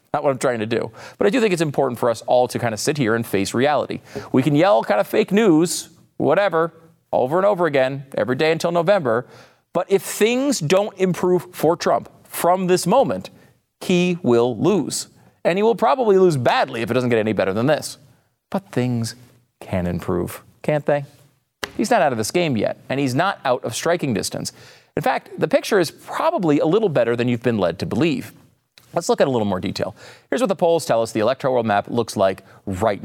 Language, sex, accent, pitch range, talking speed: English, male, American, 115-165 Hz, 220 wpm